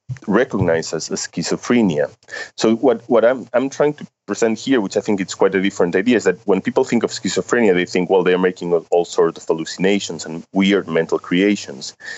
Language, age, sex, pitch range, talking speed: English, 30-49, male, 80-100 Hz, 200 wpm